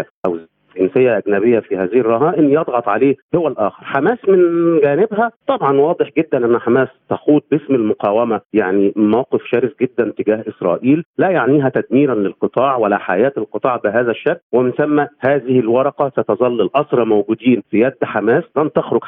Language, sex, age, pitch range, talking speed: Arabic, male, 40-59, 120-155 Hz, 150 wpm